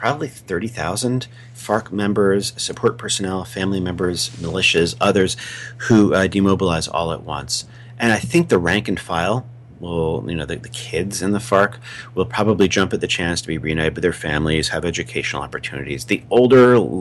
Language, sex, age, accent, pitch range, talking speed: English, male, 40-59, American, 85-120 Hz, 175 wpm